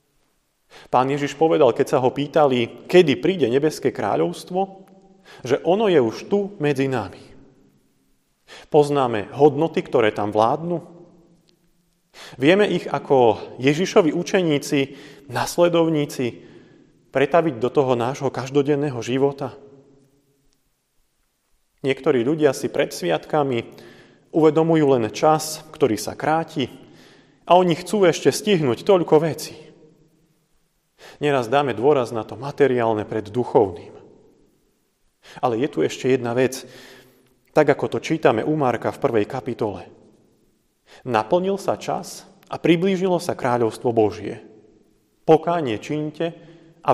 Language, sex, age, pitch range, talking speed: Slovak, male, 30-49, 120-165 Hz, 110 wpm